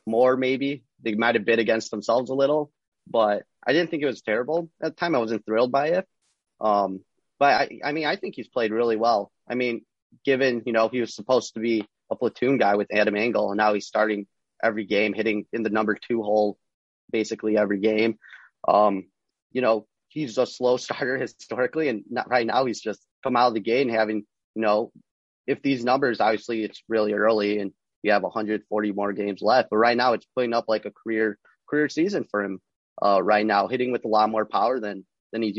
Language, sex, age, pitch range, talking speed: English, male, 30-49, 105-120 Hz, 215 wpm